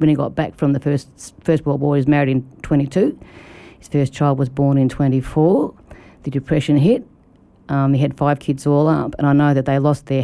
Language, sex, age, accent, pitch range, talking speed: English, female, 40-59, Australian, 135-150 Hz, 230 wpm